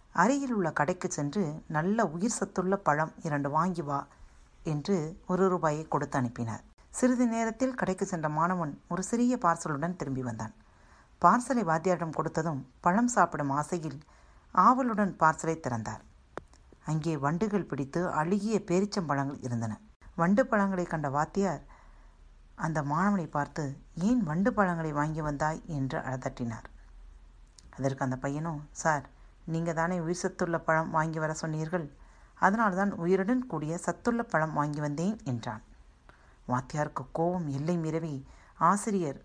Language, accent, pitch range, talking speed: Tamil, native, 145-185 Hz, 115 wpm